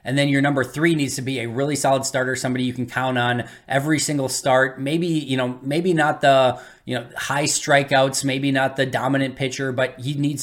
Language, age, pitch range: English, 20-39, 120-140 Hz